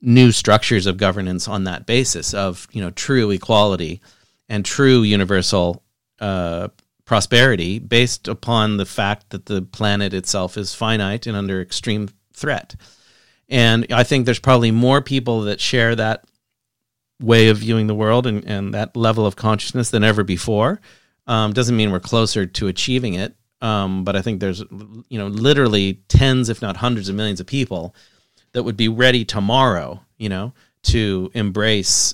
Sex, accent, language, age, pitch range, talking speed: male, American, English, 40-59, 100-120 Hz, 165 wpm